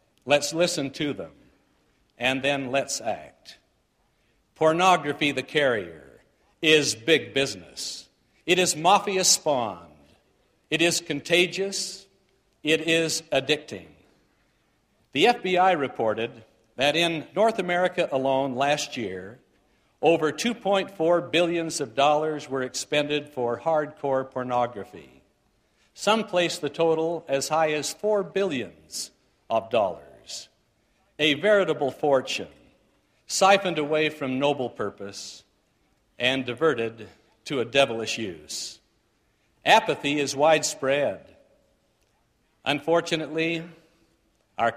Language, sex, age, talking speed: English, male, 60-79, 100 wpm